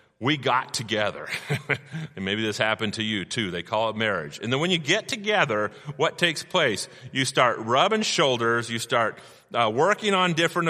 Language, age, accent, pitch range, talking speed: English, 30-49, American, 115-160 Hz, 180 wpm